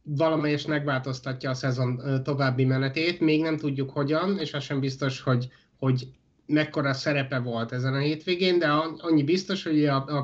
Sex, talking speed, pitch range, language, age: male, 165 wpm, 135-155 Hz, Hungarian, 30-49